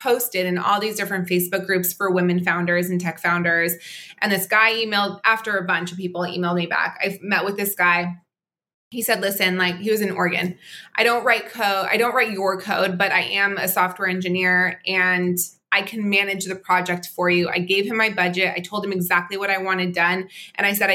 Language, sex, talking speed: English, female, 225 wpm